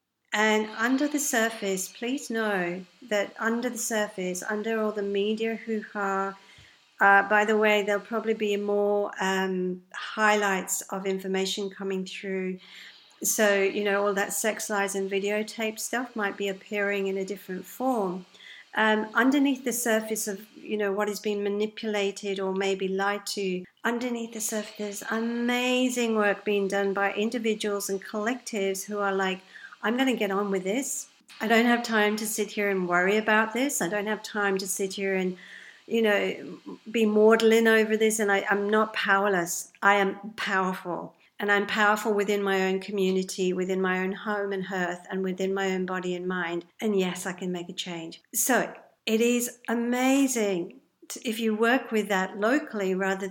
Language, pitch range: English, 190-220 Hz